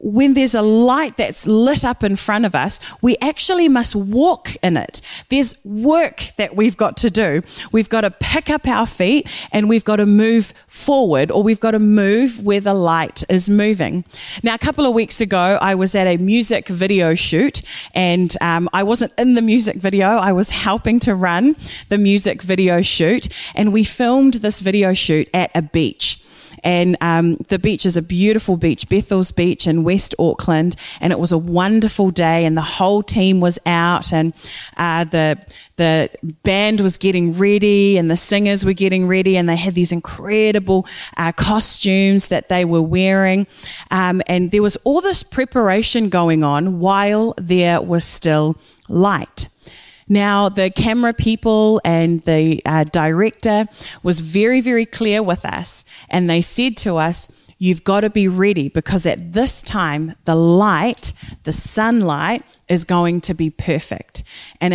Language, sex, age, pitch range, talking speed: English, female, 30-49, 175-220 Hz, 175 wpm